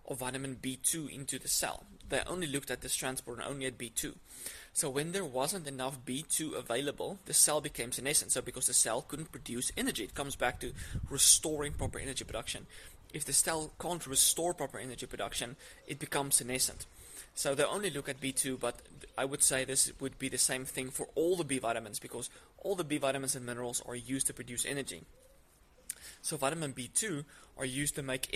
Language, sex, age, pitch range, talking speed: English, male, 20-39, 125-145 Hz, 195 wpm